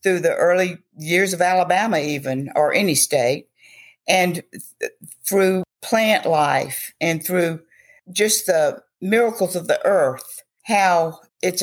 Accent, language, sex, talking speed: American, English, female, 130 wpm